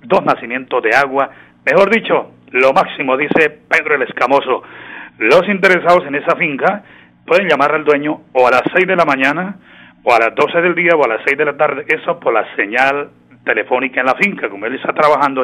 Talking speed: 205 wpm